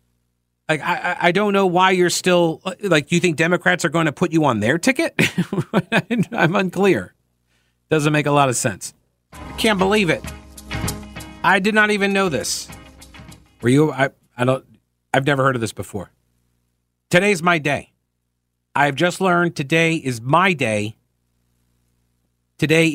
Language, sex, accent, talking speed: English, male, American, 155 wpm